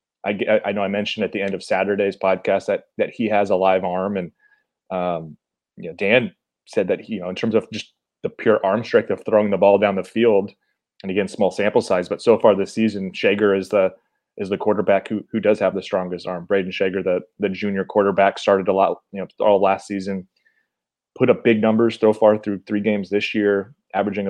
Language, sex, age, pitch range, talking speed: English, male, 30-49, 95-120 Hz, 225 wpm